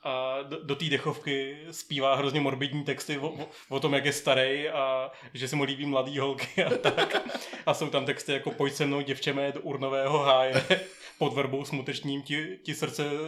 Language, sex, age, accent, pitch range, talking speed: Czech, male, 20-39, native, 135-155 Hz, 190 wpm